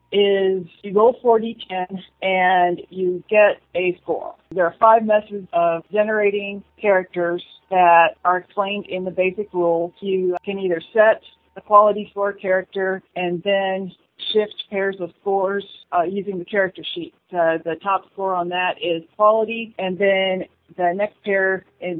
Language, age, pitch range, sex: English, 40-59, 175-200 Hz, female